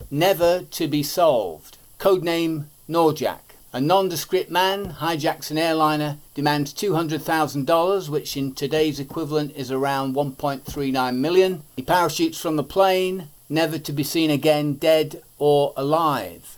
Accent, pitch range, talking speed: British, 140-170 Hz, 125 wpm